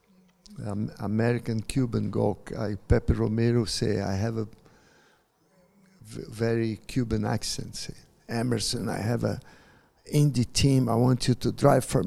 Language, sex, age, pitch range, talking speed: English, male, 50-69, 110-130 Hz, 135 wpm